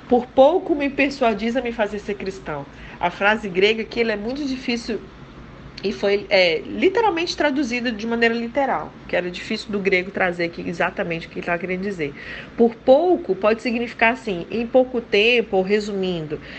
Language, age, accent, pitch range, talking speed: Portuguese, 40-59, Brazilian, 185-235 Hz, 175 wpm